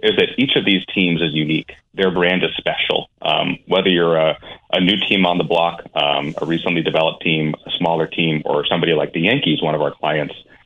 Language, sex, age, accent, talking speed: English, male, 30-49, American, 220 wpm